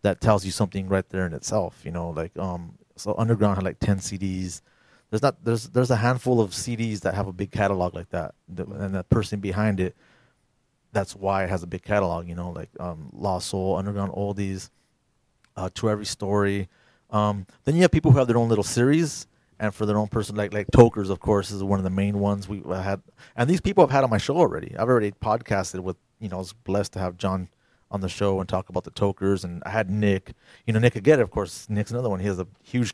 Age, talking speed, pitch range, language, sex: 30-49, 245 wpm, 95-110 Hz, English, male